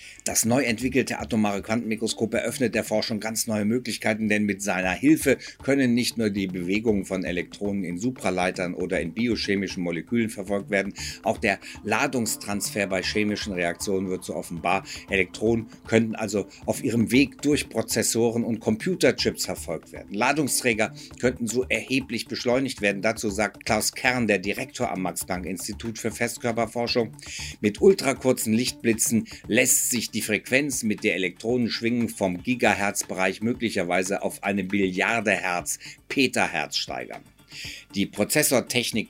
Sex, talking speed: male, 135 wpm